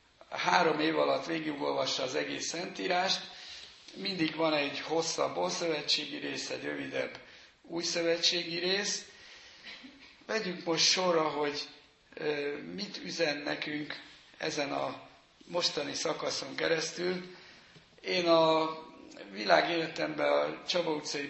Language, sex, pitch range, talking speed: Hungarian, male, 150-175 Hz, 95 wpm